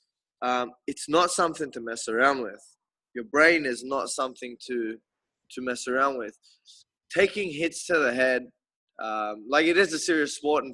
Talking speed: 175 wpm